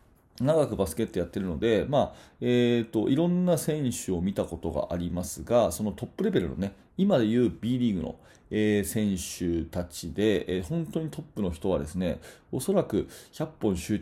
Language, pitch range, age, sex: Japanese, 95-155 Hz, 30-49, male